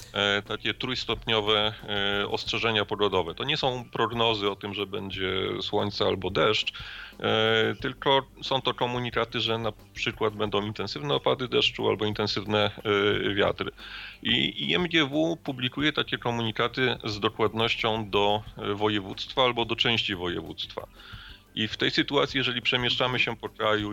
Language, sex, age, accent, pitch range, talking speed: Polish, male, 30-49, native, 100-120 Hz, 130 wpm